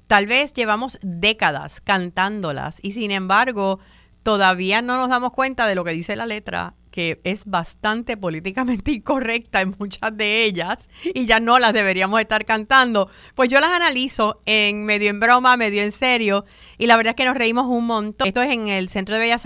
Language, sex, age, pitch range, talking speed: Spanish, female, 50-69, 185-240 Hz, 190 wpm